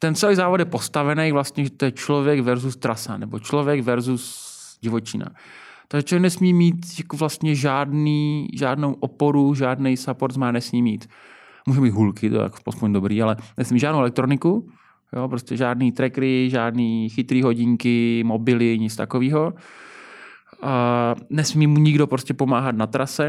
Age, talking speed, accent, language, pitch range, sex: 20-39, 150 wpm, native, Czech, 115-140 Hz, male